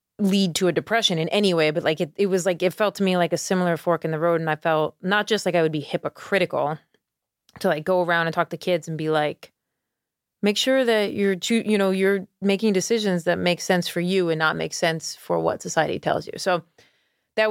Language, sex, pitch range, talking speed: English, female, 165-195 Hz, 240 wpm